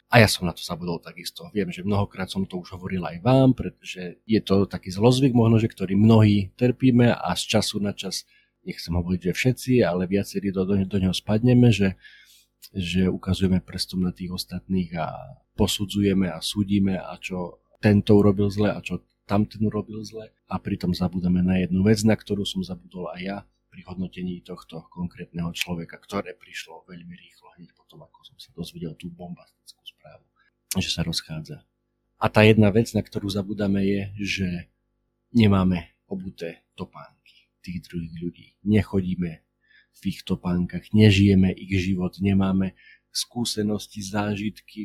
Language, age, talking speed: Slovak, 40-59, 160 wpm